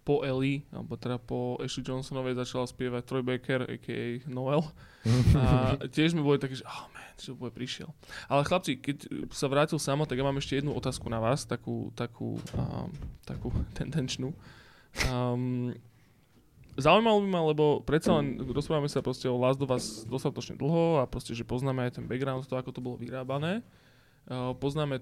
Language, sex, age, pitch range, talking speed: Slovak, male, 20-39, 125-140 Hz, 175 wpm